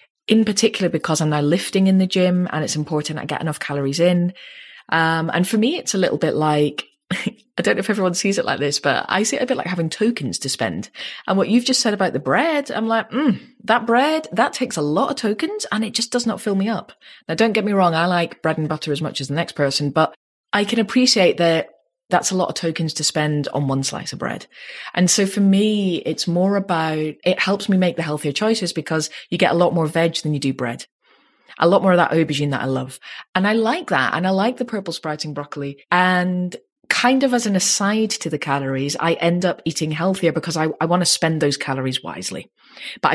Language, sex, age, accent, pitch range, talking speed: English, female, 20-39, British, 155-205 Hz, 240 wpm